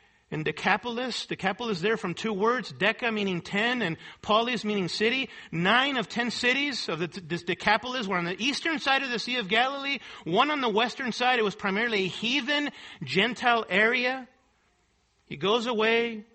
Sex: male